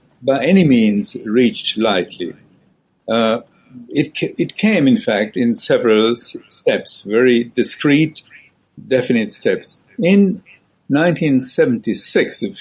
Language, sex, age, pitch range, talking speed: English, male, 60-79, 110-140 Hz, 105 wpm